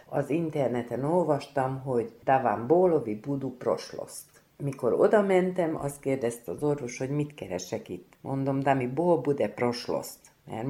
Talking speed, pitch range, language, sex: 140 wpm, 130-170 Hz, Hungarian, female